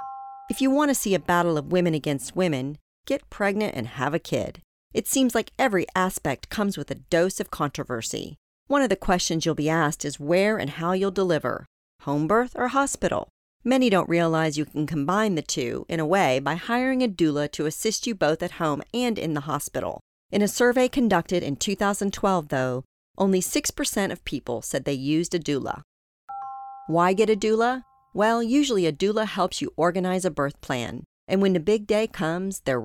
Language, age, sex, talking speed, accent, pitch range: English, 40-59, female, 195 wpm, American, 155-220 Hz